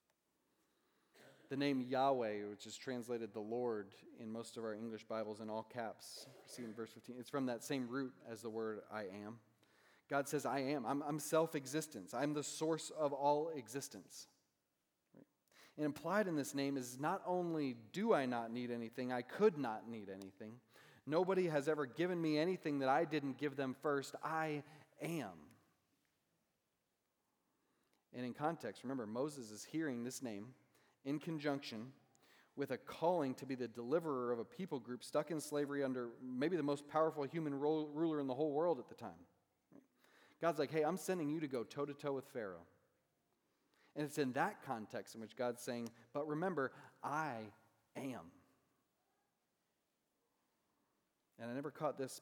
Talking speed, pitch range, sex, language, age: 165 wpm, 120-150 Hz, male, English, 30-49